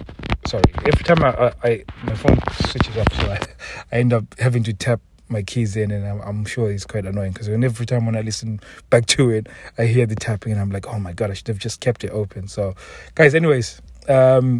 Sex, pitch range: male, 100-120 Hz